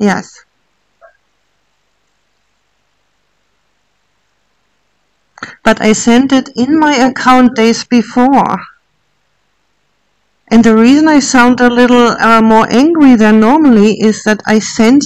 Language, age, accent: English, 50-69, German